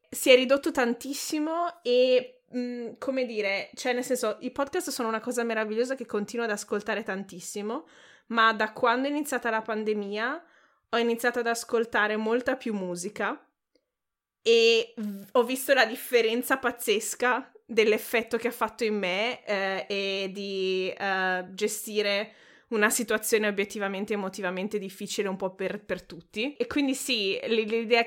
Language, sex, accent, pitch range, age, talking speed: Italian, female, native, 195-235 Hz, 20-39, 140 wpm